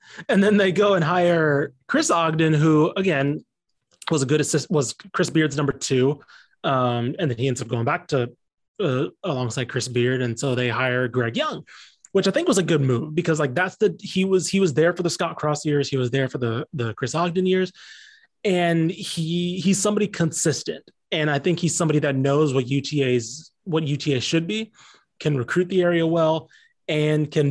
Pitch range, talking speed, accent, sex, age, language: 130-170 Hz, 205 wpm, American, male, 20-39, English